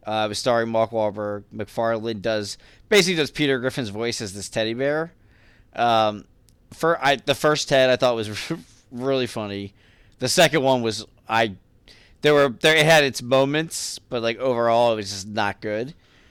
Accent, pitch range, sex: American, 110-135 Hz, male